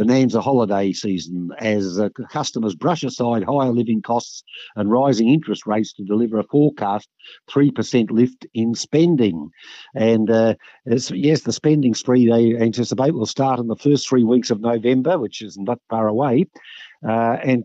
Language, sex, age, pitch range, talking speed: English, male, 50-69, 110-130 Hz, 165 wpm